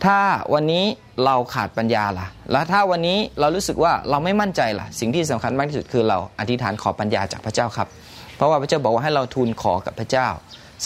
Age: 20-39